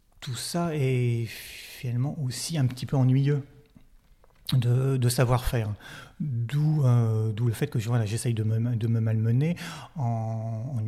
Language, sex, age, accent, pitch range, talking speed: French, male, 30-49, French, 110-130 Hz, 150 wpm